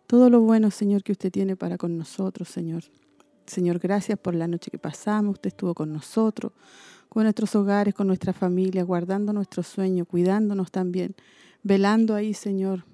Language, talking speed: Spanish, 165 wpm